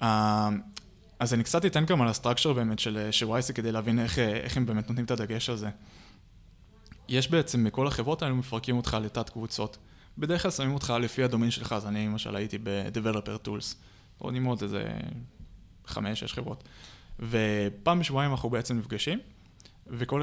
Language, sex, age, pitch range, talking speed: Hebrew, male, 20-39, 105-135 Hz, 165 wpm